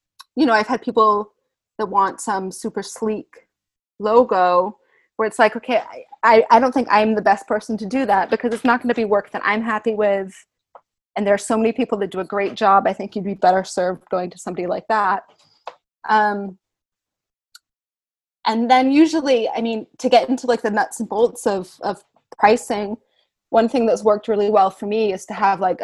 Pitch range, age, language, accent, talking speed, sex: 190-230 Hz, 20-39, English, American, 205 wpm, female